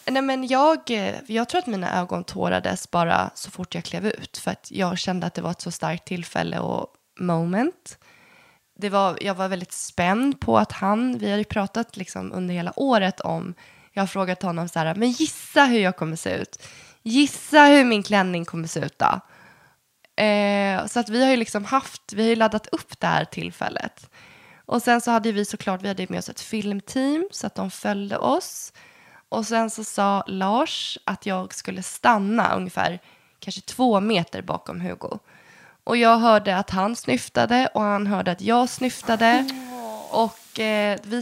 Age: 20-39